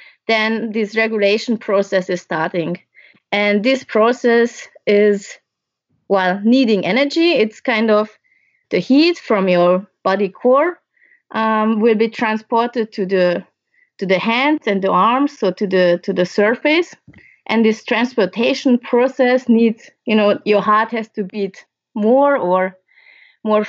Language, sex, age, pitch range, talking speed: English, female, 20-39, 200-250 Hz, 140 wpm